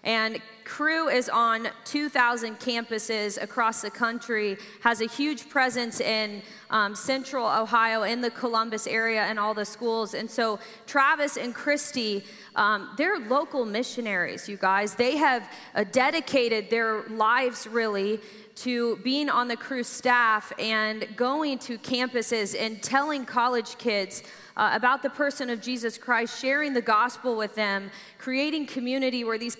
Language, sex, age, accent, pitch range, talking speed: English, female, 20-39, American, 215-250 Hz, 150 wpm